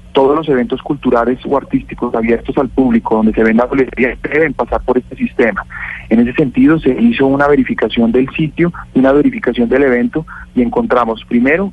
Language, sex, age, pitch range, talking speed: Spanish, male, 30-49, 120-150 Hz, 180 wpm